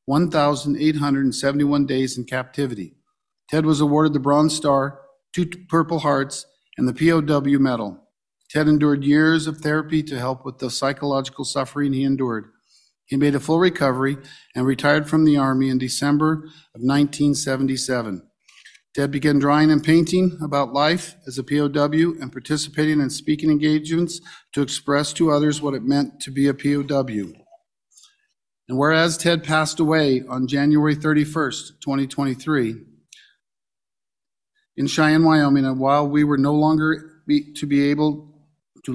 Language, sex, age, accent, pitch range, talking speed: English, male, 50-69, American, 135-155 Hz, 140 wpm